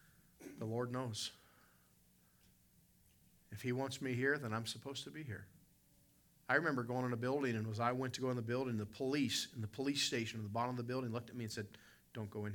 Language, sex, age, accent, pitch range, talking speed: English, male, 40-59, American, 100-135 Hz, 235 wpm